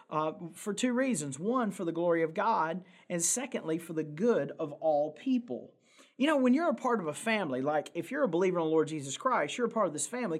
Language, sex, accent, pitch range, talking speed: English, male, American, 170-220 Hz, 250 wpm